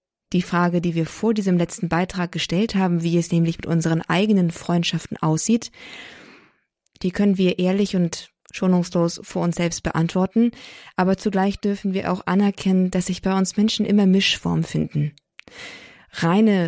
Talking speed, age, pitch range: 155 wpm, 20-39, 170-190 Hz